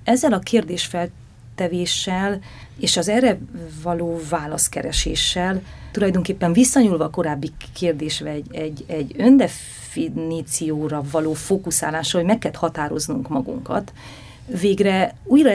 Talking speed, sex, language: 95 wpm, female, Hungarian